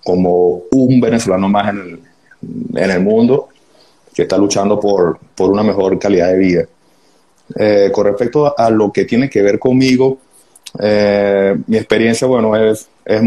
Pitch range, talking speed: 100-120 Hz, 160 wpm